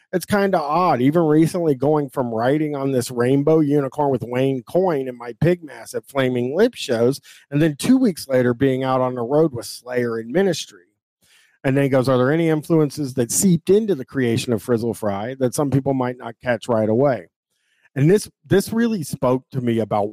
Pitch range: 120-170 Hz